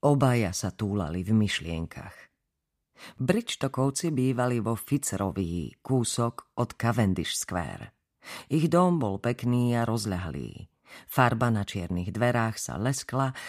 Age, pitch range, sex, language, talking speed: 40-59, 100-130 Hz, female, Slovak, 110 wpm